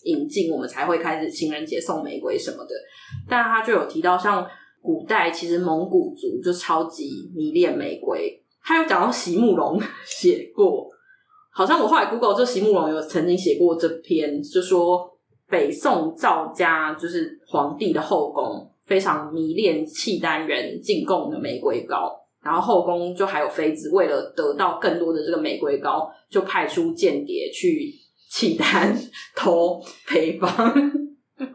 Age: 20-39